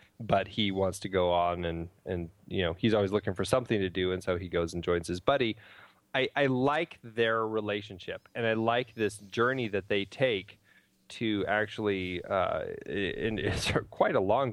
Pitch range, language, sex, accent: 95-120 Hz, English, male, American